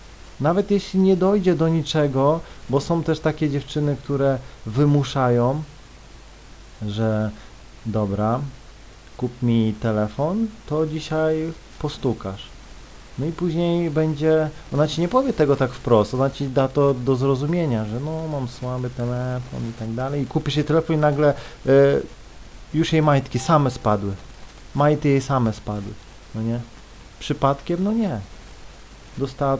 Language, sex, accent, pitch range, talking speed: Polish, male, native, 115-160 Hz, 135 wpm